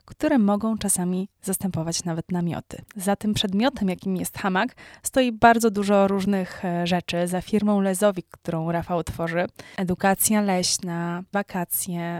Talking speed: 130 wpm